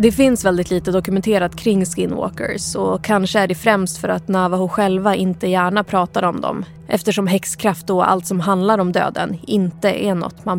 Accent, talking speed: native, 185 wpm